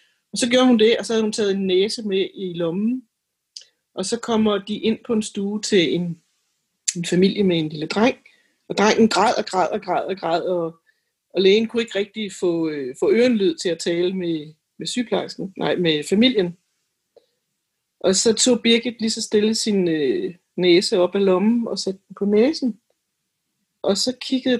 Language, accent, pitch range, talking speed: Danish, native, 190-235 Hz, 190 wpm